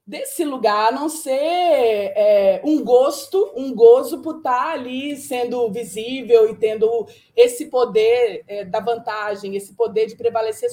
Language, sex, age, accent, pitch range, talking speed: Portuguese, female, 20-39, Brazilian, 220-285 Hz, 145 wpm